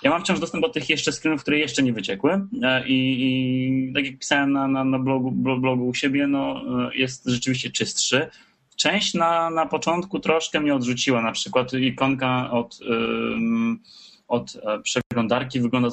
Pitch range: 120-145 Hz